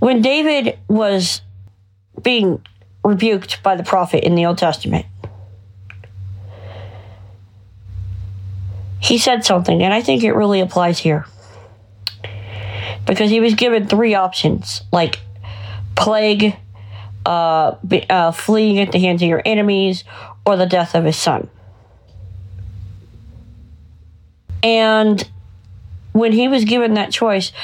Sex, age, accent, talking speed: female, 40-59, American, 115 wpm